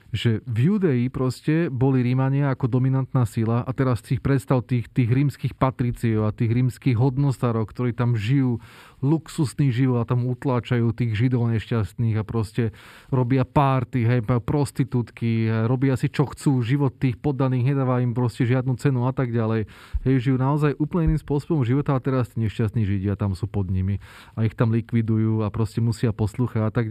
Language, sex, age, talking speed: Slovak, male, 30-49, 180 wpm